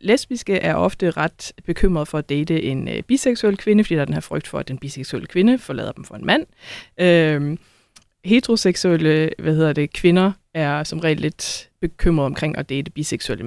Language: Danish